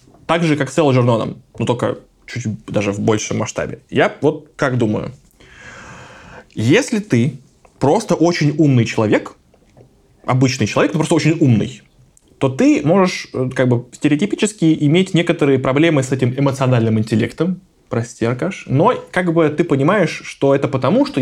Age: 20-39